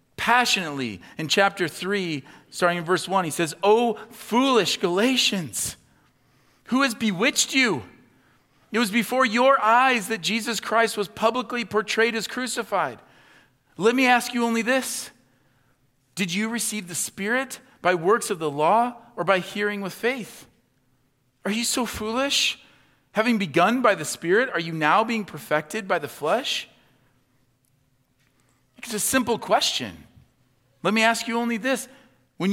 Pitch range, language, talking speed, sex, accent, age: 155-235 Hz, English, 145 wpm, male, American, 40-59